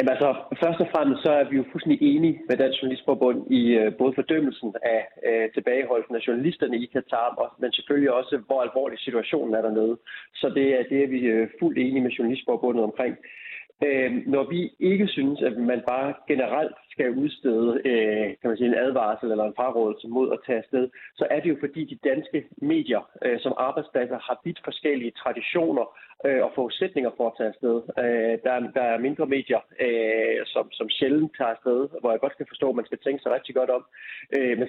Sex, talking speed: male, 195 wpm